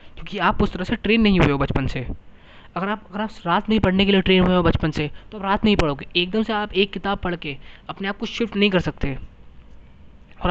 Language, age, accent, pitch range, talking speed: Hindi, 20-39, native, 150-190 Hz, 265 wpm